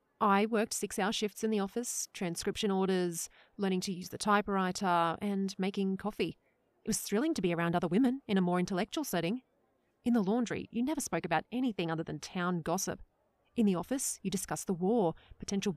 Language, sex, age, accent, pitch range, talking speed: English, female, 30-49, Australian, 185-235 Hz, 190 wpm